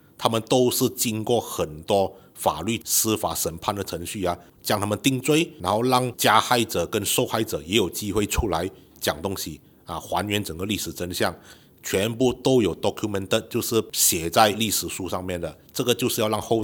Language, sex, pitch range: Chinese, male, 90-115 Hz